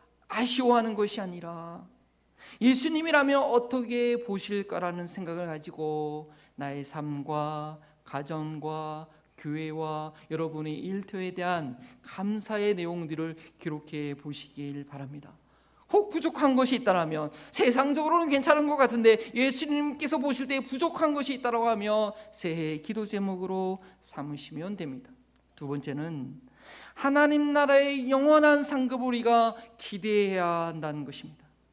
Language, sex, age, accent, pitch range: Korean, male, 40-59, native, 170-280 Hz